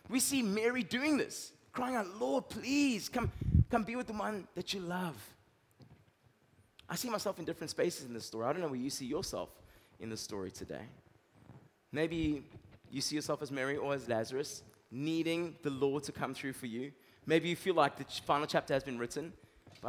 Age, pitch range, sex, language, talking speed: 20-39, 125-180 Hz, male, English, 200 wpm